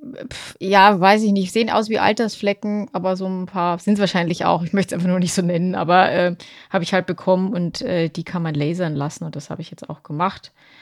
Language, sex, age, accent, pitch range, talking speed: German, female, 30-49, German, 175-210 Hz, 245 wpm